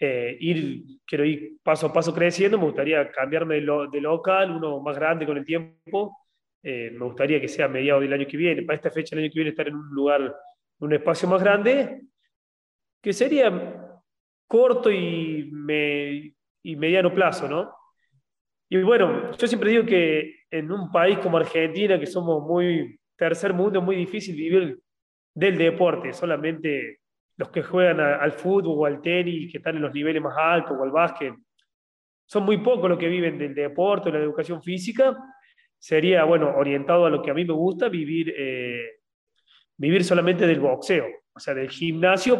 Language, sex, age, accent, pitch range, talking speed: Spanish, male, 30-49, Argentinian, 150-185 Hz, 185 wpm